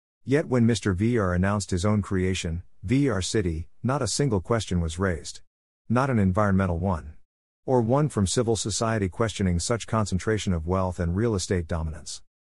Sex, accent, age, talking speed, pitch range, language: male, American, 50-69, 165 wpm, 90-115 Hz, English